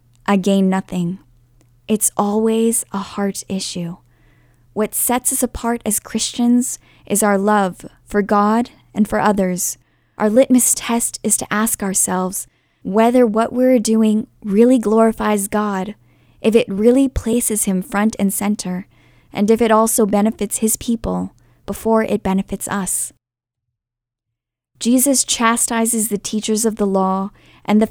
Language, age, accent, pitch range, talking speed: English, 10-29, American, 185-220 Hz, 140 wpm